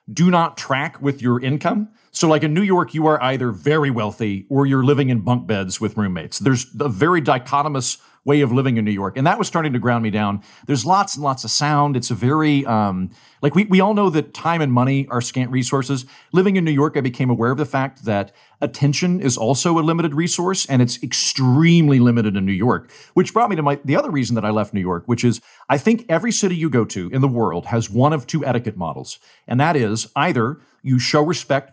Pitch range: 120-160 Hz